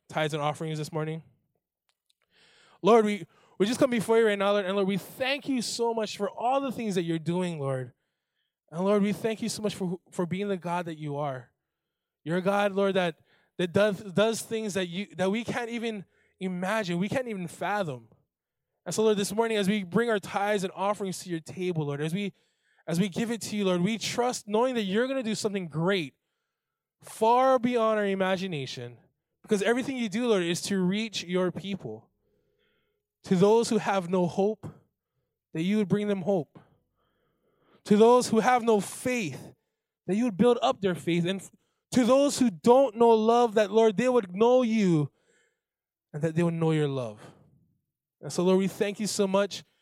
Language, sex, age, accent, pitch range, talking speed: English, male, 20-39, American, 175-220 Hz, 200 wpm